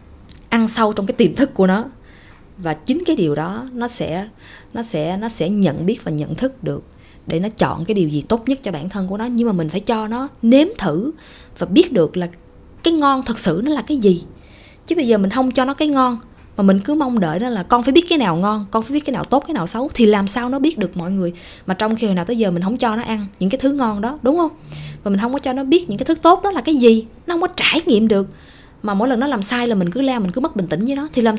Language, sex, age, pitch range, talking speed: Vietnamese, female, 20-39, 175-245 Hz, 295 wpm